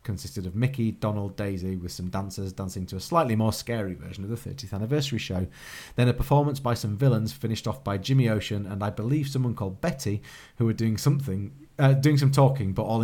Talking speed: 215 wpm